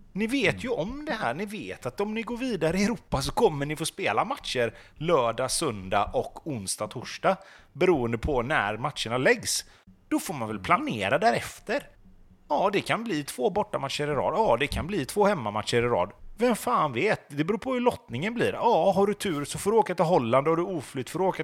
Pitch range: 120-200 Hz